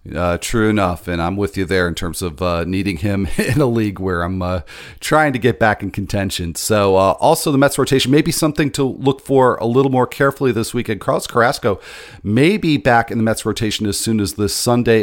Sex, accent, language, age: male, American, English, 40-59